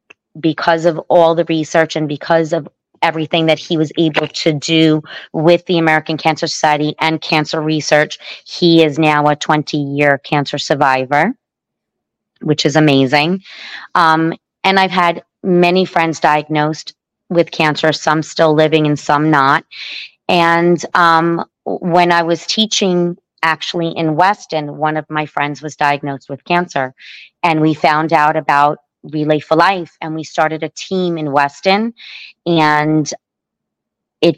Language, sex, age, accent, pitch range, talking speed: English, female, 30-49, American, 150-170 Hz, 145 wpm